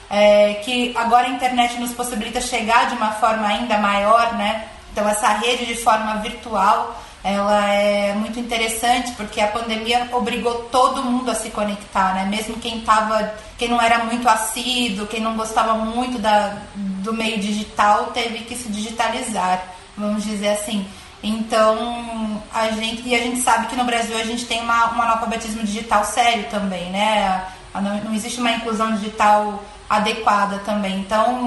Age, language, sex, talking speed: 20-39, Portuguese, female, 160 wpm